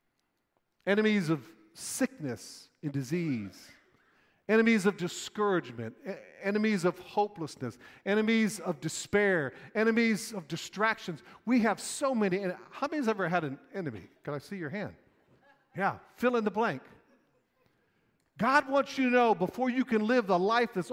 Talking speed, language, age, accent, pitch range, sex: 145 wpm, English, 50-69, American, 190-255 Hz, male